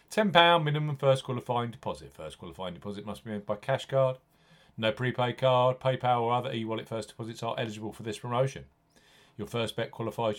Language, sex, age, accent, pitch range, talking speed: English, male, 40-59, British, 105-135 Hz, 185 wpm